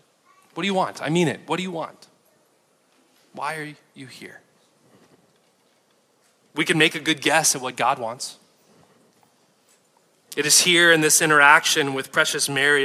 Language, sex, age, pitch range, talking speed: English, male, 20-39, 135-155 Hz, 160 wpm